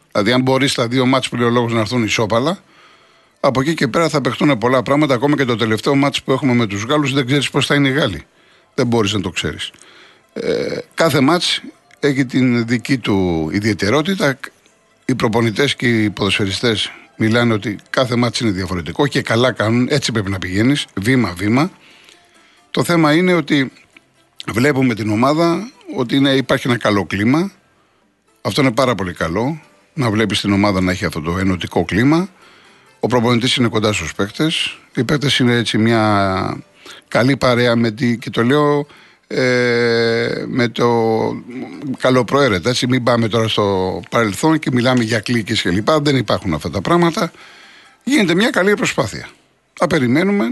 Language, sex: Greek, male